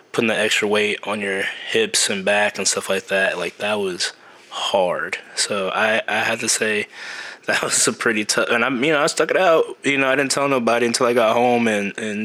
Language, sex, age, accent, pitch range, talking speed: English, male, 20-39, American, 105-150 Hz, 230 wpm